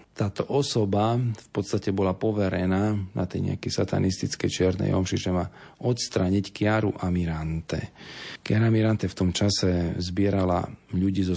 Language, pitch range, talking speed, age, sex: Slovak, 90-105 Hz, 130 wpm, 40-59, male